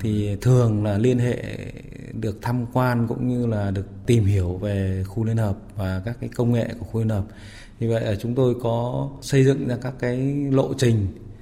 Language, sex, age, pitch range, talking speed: Vietnamese, male, 20-39, 105-125 Hz, 210 wpm